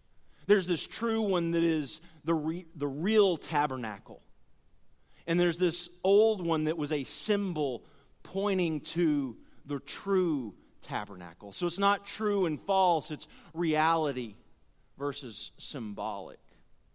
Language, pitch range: English, 145-190 Hz